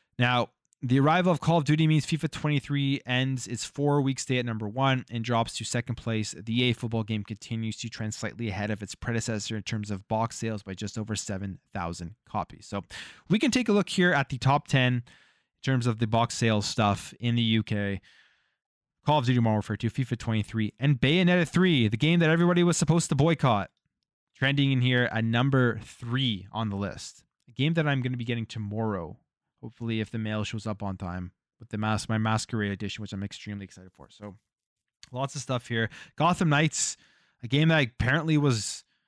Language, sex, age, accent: English, male, 20-39, American